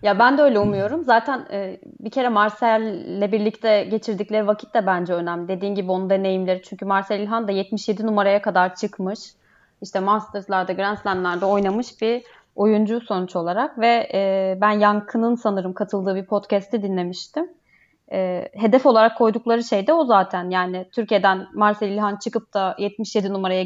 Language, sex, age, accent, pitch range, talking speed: Turkish, female, 20-39, native, 190-230 Hz, 155 wpm